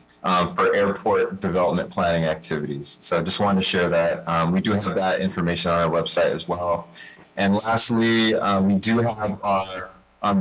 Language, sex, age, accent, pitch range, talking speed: English, male, 20-39, American, 90-115 Hz, 185 wpm